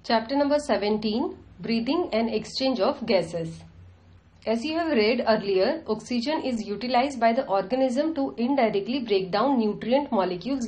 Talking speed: 140 wpm